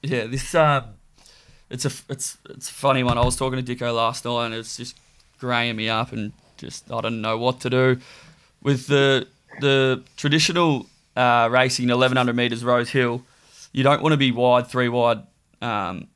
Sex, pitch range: male, 120-130 Hz